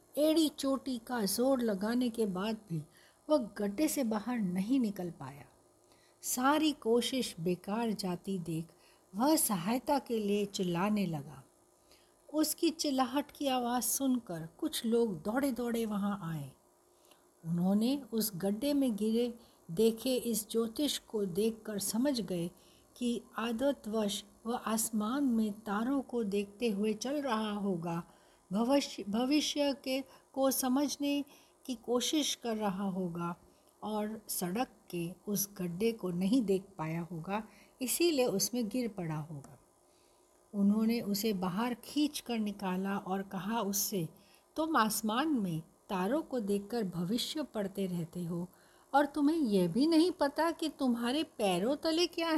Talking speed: 135 wpm